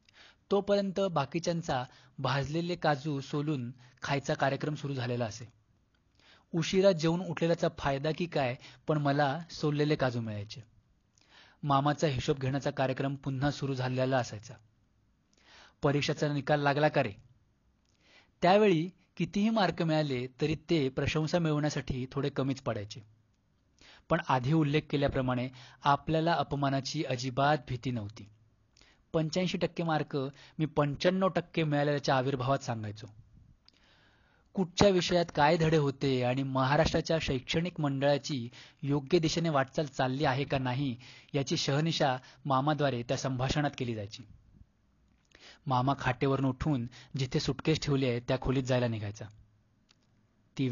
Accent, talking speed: native, 115 wpm